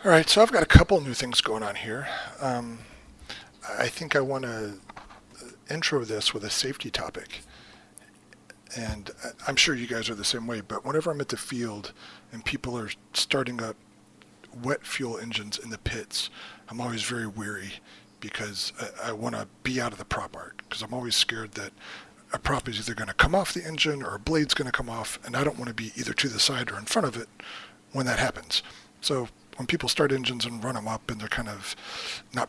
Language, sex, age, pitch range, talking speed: English, male, 40-59, 105-140 Hz, 220 wpm